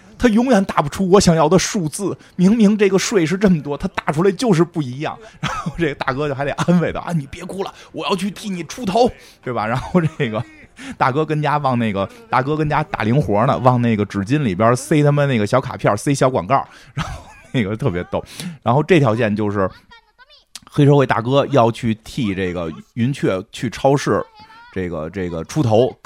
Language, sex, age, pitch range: Chinese, male, 20-39, 110-155 Hz